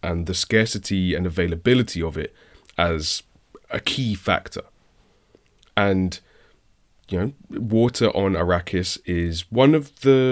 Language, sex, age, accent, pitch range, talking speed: English, male, 20-39, British, 90-115 Hz, 120 wpm